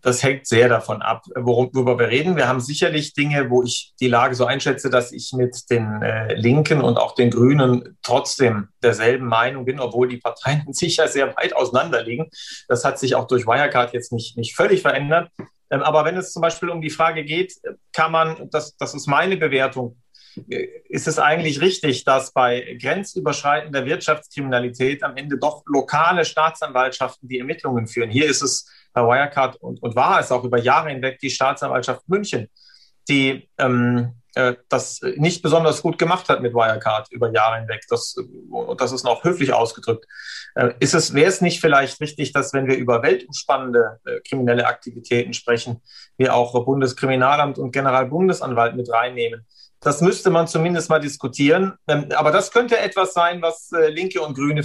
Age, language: 40-59, German